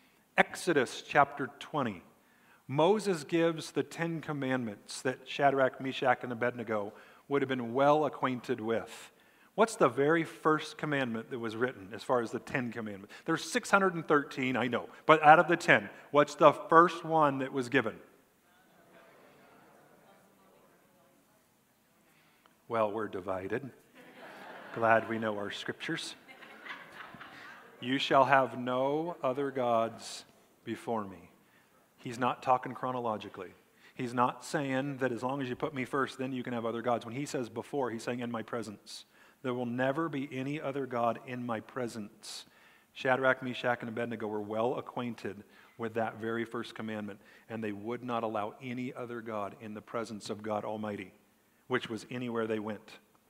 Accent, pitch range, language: American, 115-140 Hz, English